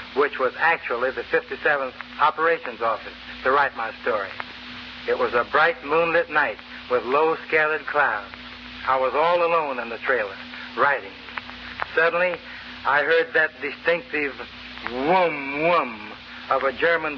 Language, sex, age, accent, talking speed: English, male, 60-79, American, 135 wpm